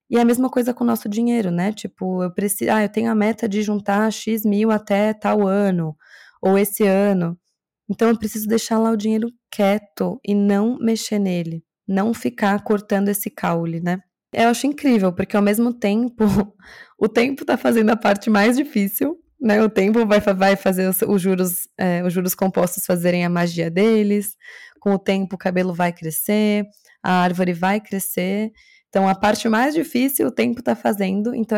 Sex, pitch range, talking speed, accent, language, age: female, 185-225 Hz, 185 wpm, Brazilian, Portuguese, 20-39